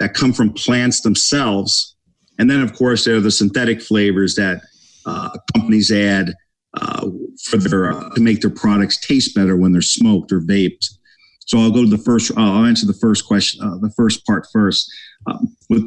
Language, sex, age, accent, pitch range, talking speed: English, male, 50-69, American, 105-150 Hz, 195 wpm